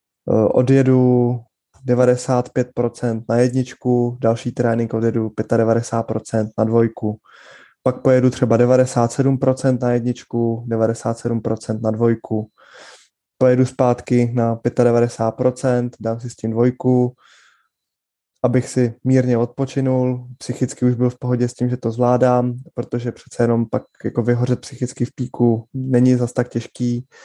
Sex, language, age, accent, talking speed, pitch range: male, Czech, 20-39, native, 120 wpm, 115-130 Hz